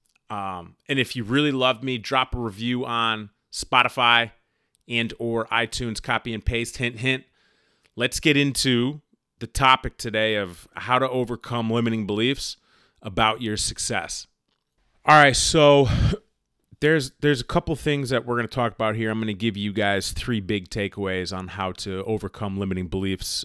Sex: male